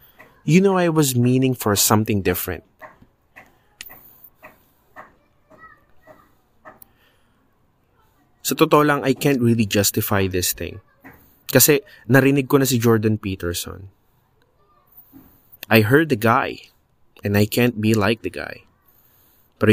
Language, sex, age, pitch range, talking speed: Filipino, male, 20-39, 95-125 Hz, 100 wpm